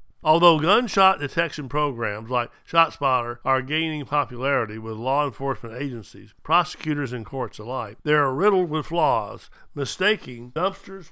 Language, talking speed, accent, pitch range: English, 130 wpm, American, 125-155 Hz